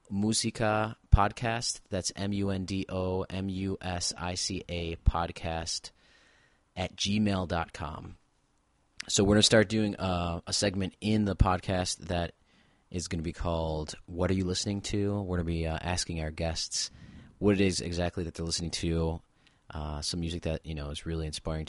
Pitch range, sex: 85-100 Hz, male